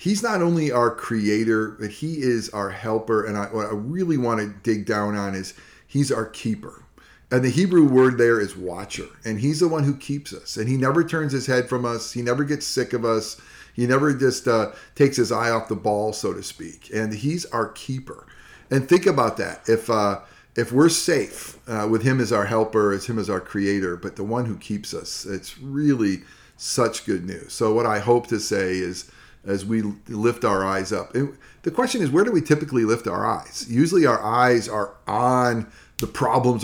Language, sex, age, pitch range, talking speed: English, male, 40-59, 100-125 Hz, 215 wpm